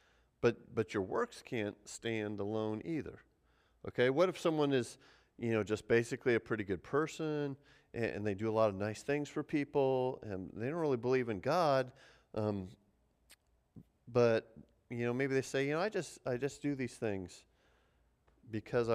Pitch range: 110-140 Hz